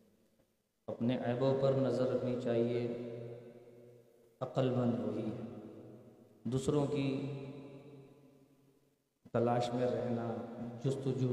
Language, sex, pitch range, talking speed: Urdu, male, 115-140 Hz, 80 wpm